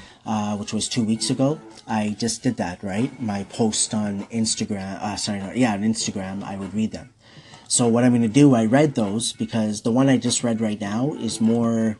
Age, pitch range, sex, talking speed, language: 30-49, 105-120 Hz, male, 220 wpm, English